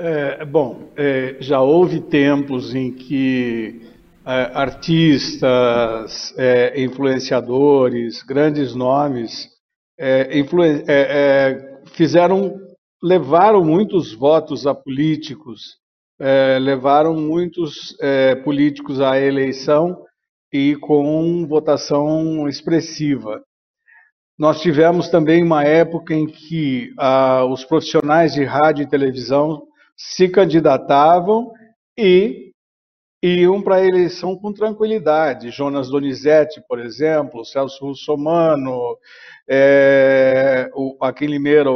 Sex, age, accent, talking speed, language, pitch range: male, 60-79, Brazilian, 85 wpm, Portuguese, 135-170 Hz